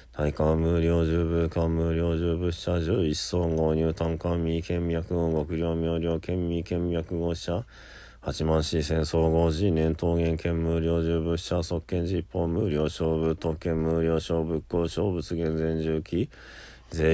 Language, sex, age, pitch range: Japanese, male, 20-39, 80-85 Hz